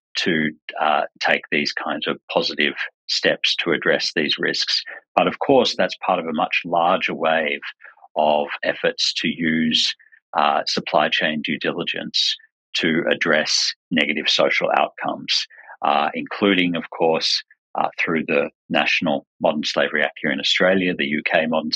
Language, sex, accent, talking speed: English, male, Australian, 145 wpm